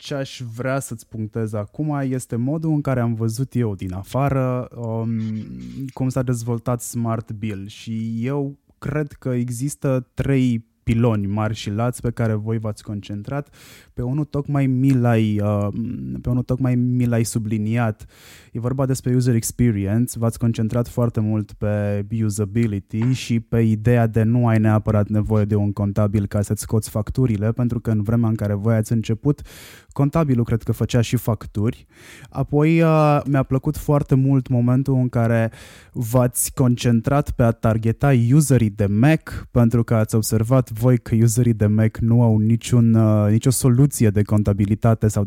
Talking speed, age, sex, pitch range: 155 wpm, 20-39, male, 110-130 Hz